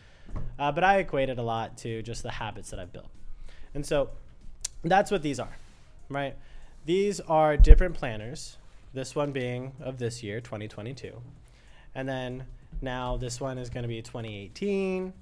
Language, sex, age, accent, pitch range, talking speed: English, male, 20-39, American, 110-155 Hz, 165 wpm